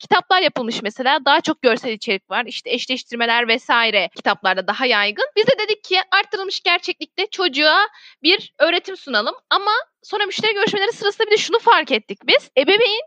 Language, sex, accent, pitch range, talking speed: Turkish, female, native, 255-360 Hz, 165 wpm